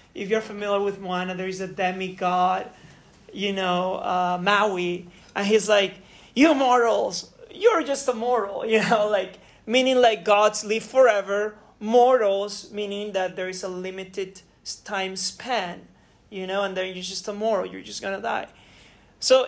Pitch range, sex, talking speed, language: 190-245 Hz, male, 165 wpm, English